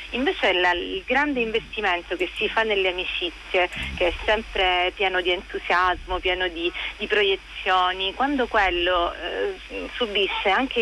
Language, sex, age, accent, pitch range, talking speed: Italian, female, 40-59, native, 180-225 Hz, 145 wpm